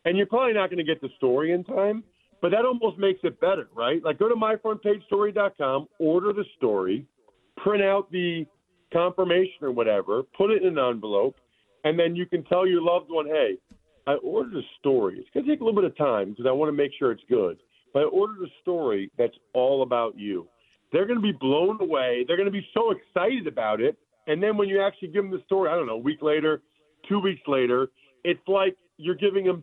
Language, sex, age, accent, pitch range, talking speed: English, male, 50-69, American, 150-200 Hz, 225 wpm